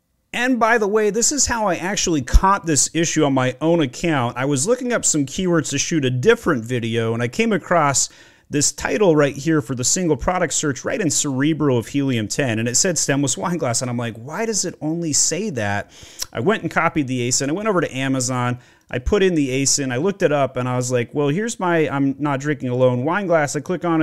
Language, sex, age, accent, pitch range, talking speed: English, male, 30-49, American, 125-165 Hz, 235 wpm